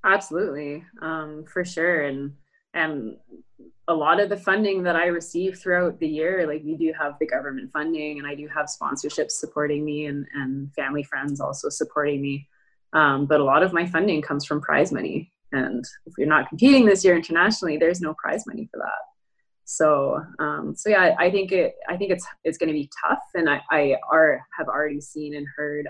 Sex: female